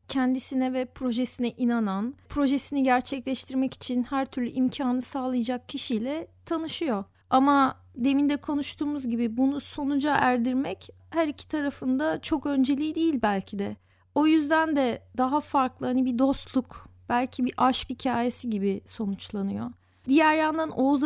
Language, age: Turkish, 40-59